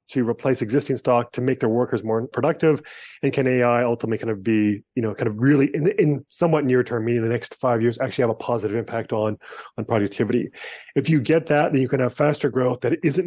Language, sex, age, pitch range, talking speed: English, male, 30-49, 120-140 Hz, 235 wpm